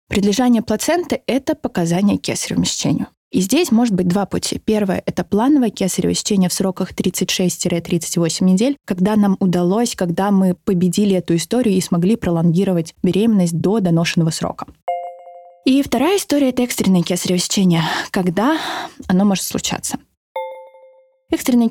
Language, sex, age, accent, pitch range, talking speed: Russian, female, 20-39, native, 180-230 Hz, 140 wpm